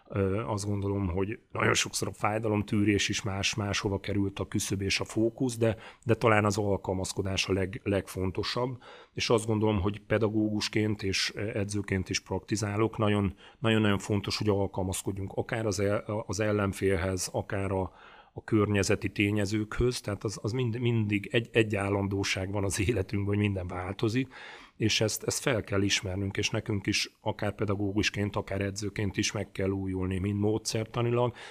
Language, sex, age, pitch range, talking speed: Hungarian, male, 40-59, 95-105 Hz, 145 wpm